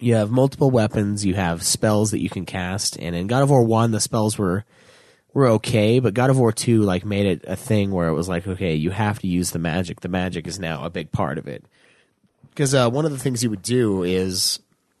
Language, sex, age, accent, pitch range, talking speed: English, male, 30-49, American, 95-120 Hz, 250 wpm